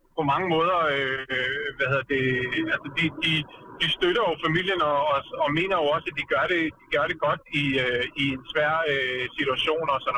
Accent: native